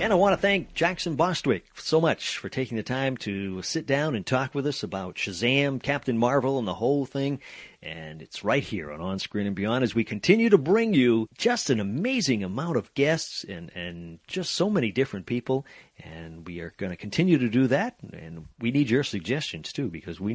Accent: American